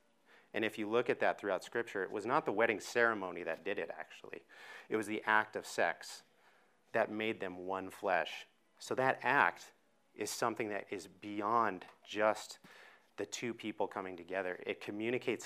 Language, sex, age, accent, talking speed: English, male, 30-49, American, 175 wpm